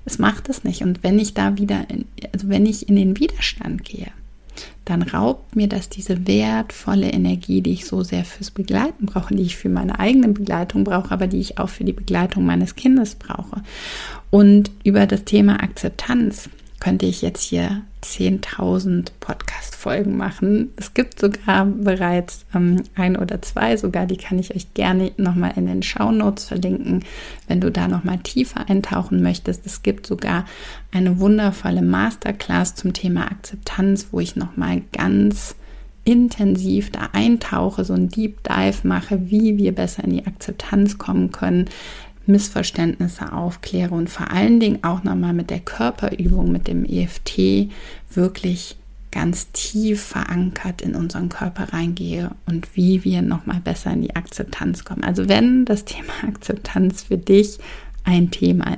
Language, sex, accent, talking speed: German, female, German, 160 wpm